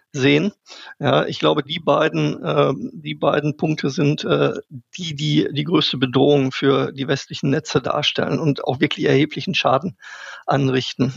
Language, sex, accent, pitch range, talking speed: German, male, German, 140-160 Hz, 150 wpm